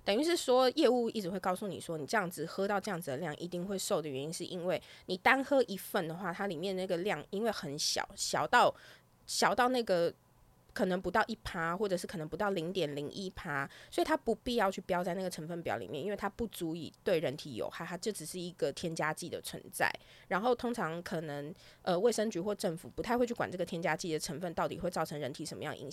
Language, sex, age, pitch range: Chinese, female, 20-39, 170-220 Hz